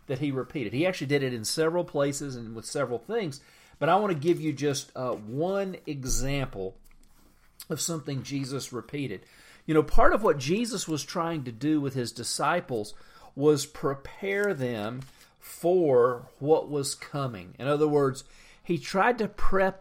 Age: 50-69